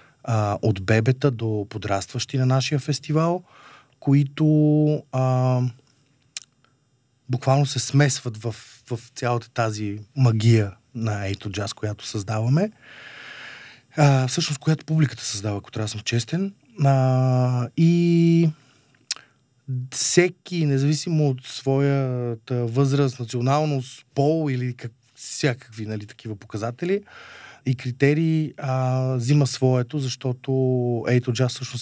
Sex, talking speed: male, 105 wpm